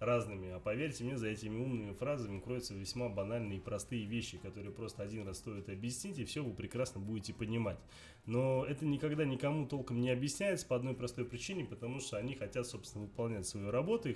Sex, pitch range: male, 105-140 Hz